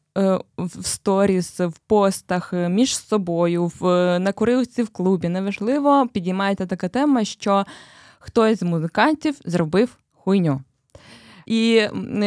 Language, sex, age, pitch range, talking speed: Ukrainian, female, 20-39, 195-235 Hz, 110 wpm